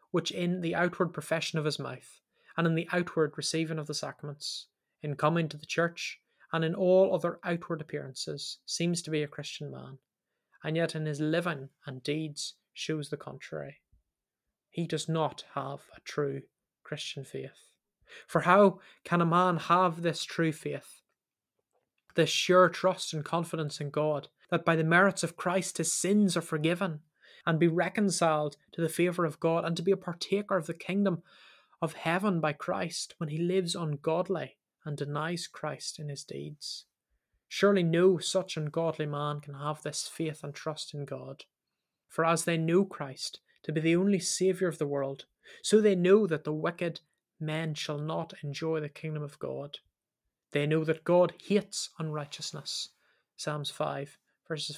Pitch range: 150-175 Hz